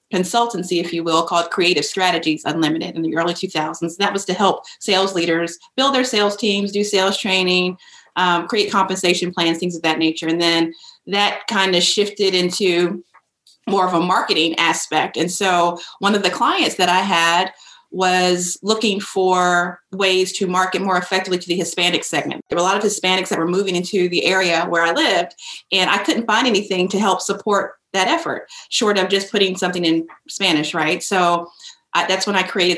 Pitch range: 165-190 Hz